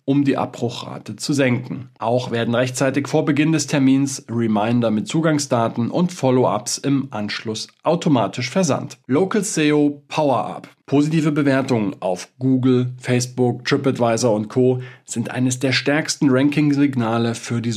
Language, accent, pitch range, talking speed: German, German, 120-150 Hz, 130 wpm